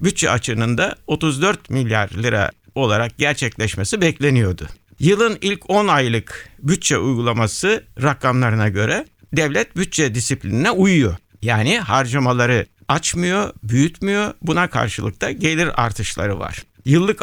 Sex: male